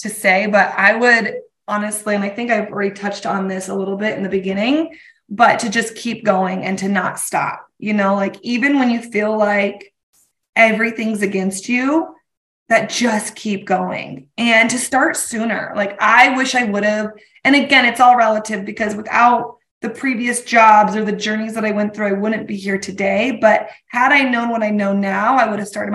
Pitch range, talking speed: 205-250 Hz, 205 wpm